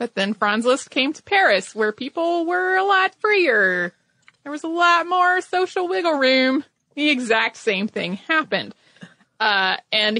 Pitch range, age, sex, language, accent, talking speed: 205-280 Hz, 20-39, female, English, American, 165 wpm